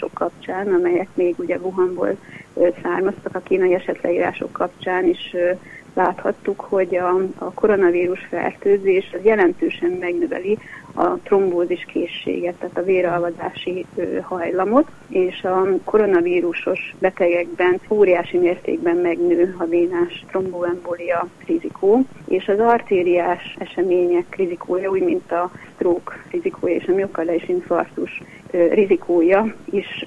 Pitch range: 175-225 Hz